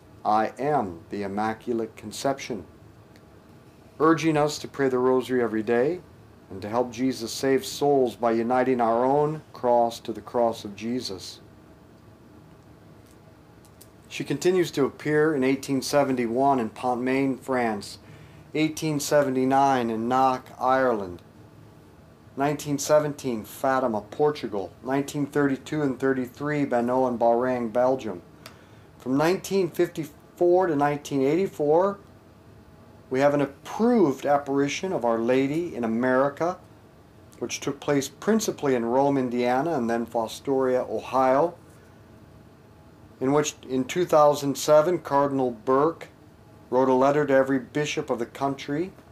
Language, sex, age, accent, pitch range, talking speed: English, male, 50-69, American, 115-145 Hz, 110 wpm